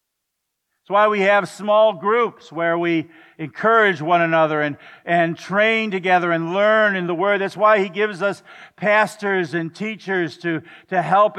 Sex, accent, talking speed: male, American, 165 wpm